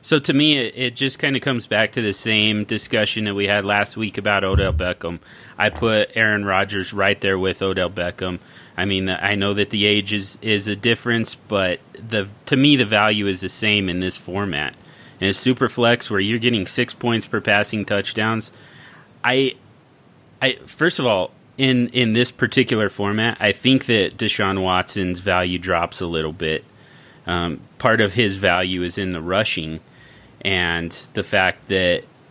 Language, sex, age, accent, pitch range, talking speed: English, male, 30-49, American, 95-115 Hz, 185 wpm